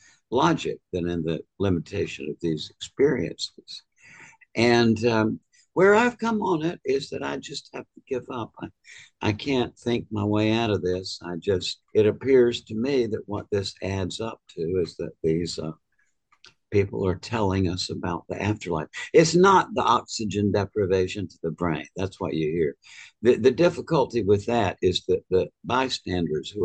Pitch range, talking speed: 90-115 Hz, 175 wpm